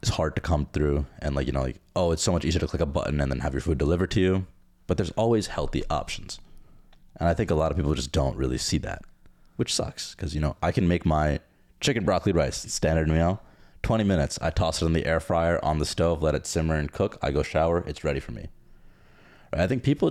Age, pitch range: 30-49, 70-90 Hz